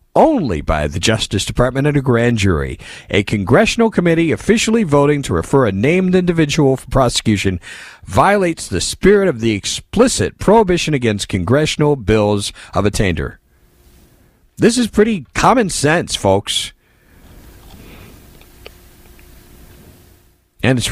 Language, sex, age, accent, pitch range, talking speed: English, male, 50-69, American, 90-135 Hz, 120 wpm